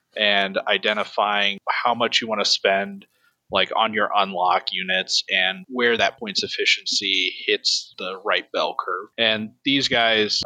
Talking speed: 150 wpm